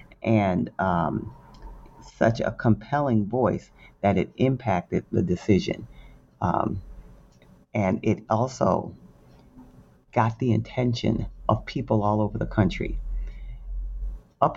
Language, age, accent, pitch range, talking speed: English, 40-59, American, 95-120 Hz, 105 wpm